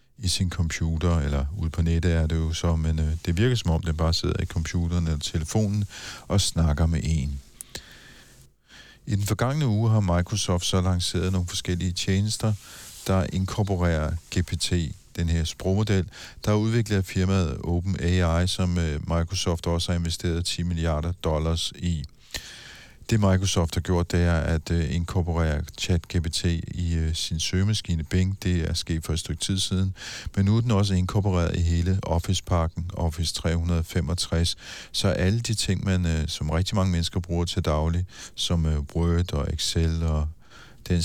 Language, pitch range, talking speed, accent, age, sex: Danish, 80-95 Hz, 160 wpm, native, 50-69, male